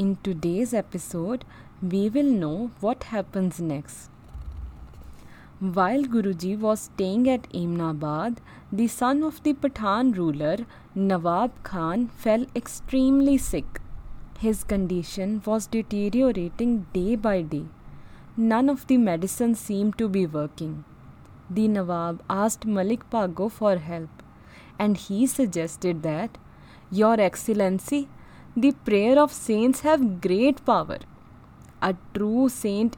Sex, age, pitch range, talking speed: female, 20-39, 190-245 Hz, 115 wpm